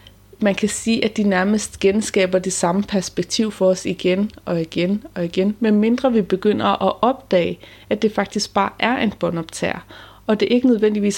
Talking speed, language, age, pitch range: 185 wpm, Danish, 30-49, 180-215 Hz